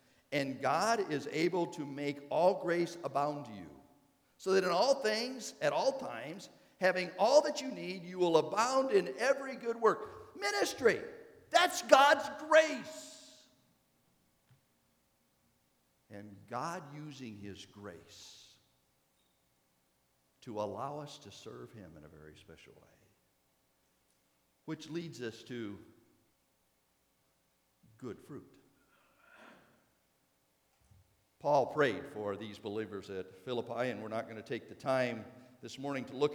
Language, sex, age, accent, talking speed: English, male, 50-69, American, 125 wpm